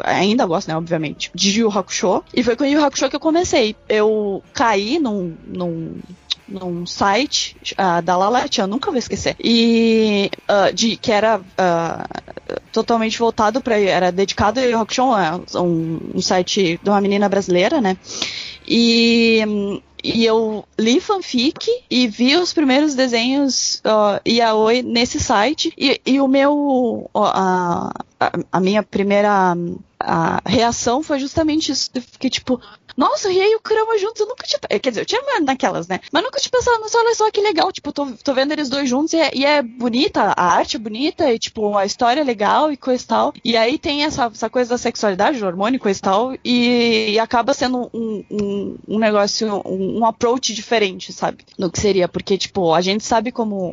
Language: Portuguese